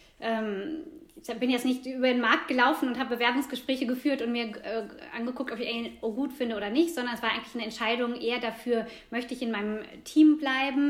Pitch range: 220-255 Hz